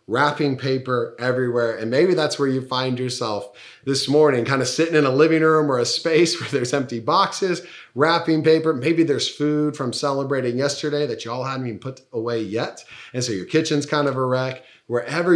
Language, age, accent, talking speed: English, 40-59, American, 200 wpm